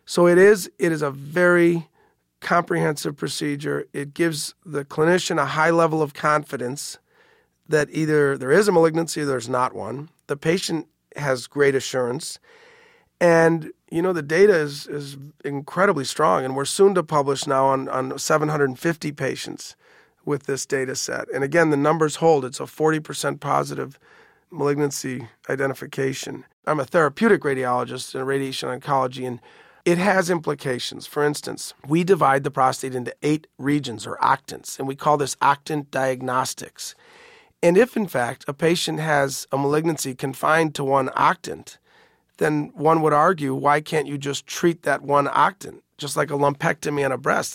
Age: 40-59